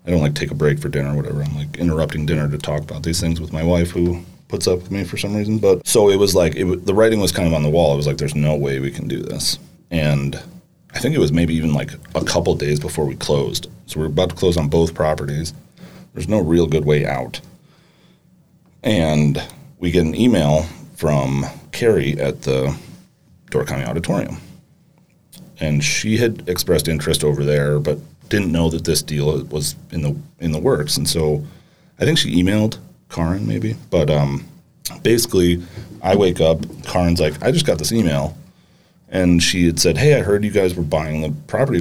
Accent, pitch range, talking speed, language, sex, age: American, 75-95 Hz, 215 wpm, English, male, 30-49